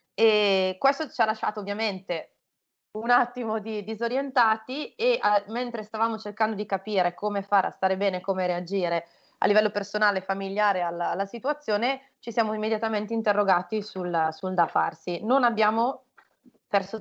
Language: Italian